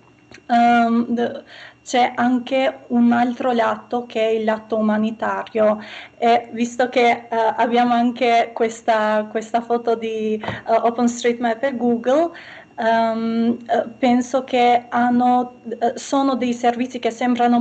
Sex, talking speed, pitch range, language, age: female, 100 wpm, 225-245 Hz, Italian, 30-49